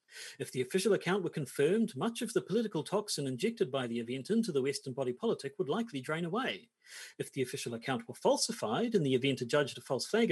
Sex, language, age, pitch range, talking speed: male, English, 40-59, 135-215 Hz, 215 wpm